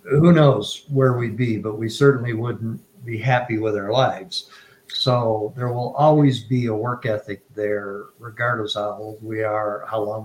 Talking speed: 180 wpm